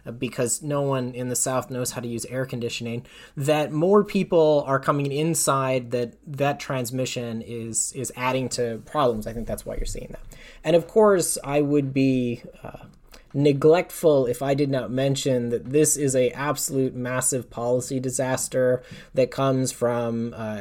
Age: 20-39